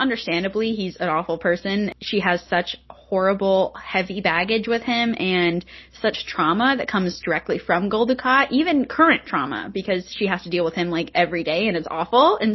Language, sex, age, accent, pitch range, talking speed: English, female, 10-29, American, 180-235 Hz, 180 wpm